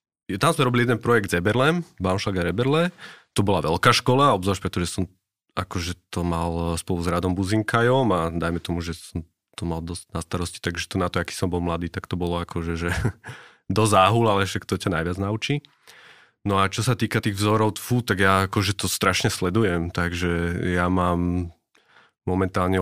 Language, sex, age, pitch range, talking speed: Slovak, male, 30-49, 90-105 Hz, 185 wpm